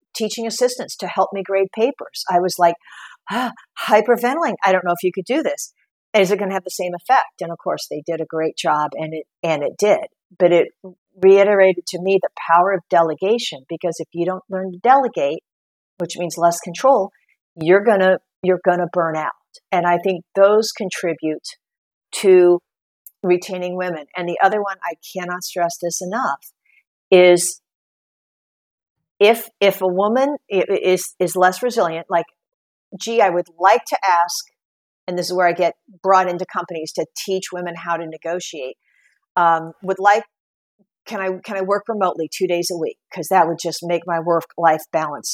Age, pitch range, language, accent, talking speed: 50-69, 170-210 Hz, English, American, 185 wpm